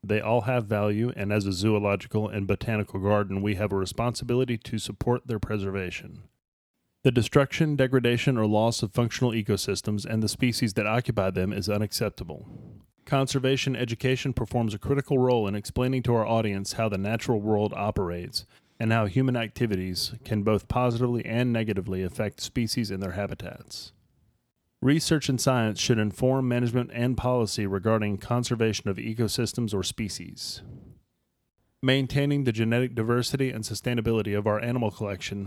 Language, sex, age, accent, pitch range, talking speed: English, male, 30-49, American, 105-125 Hz, 150 wpm